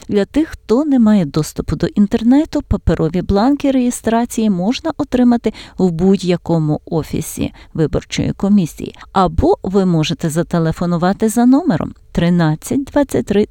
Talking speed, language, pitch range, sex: 115 wpm, Ukrainian, 170-230 Hz, female